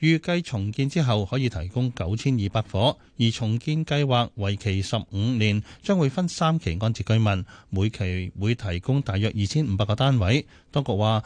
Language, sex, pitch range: Chinese, male, 100-140 Hz